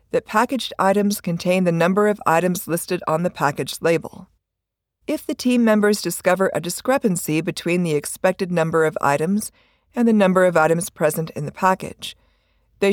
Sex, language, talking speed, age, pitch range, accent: female, English, 165 wpm, 50-69, 160-220 Hz, American